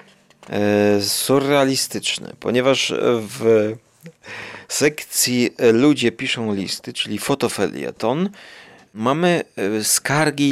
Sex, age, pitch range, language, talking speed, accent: male, 40-59, 110-150 Hz, Polish, 65 wpm, native